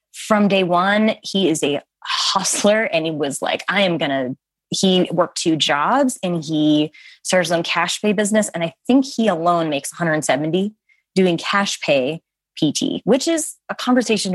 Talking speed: 170 wpm